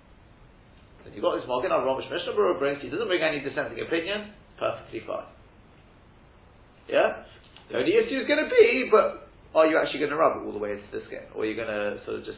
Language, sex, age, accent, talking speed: English, male, 40-59, British, 225 wpm